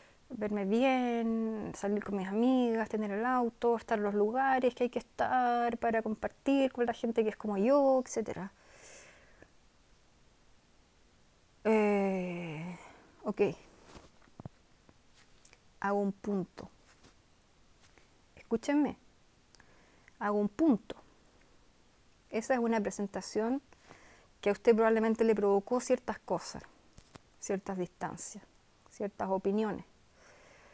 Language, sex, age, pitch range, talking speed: Spanish, female, 30-49, 200-235 Hz, 100 wpm